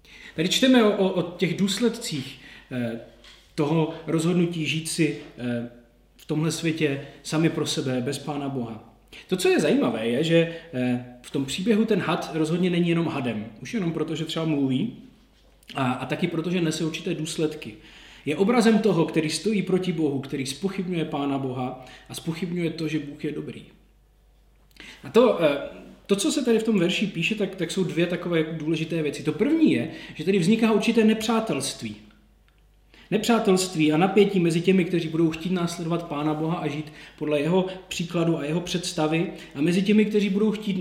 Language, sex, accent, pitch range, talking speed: Czech, male, native, 150-190 Hz, 180 wpm